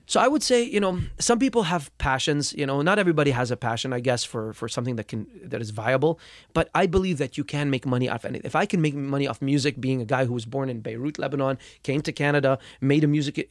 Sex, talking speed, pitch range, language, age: male, 260 wpm, 130-170 Hz, English, 30-49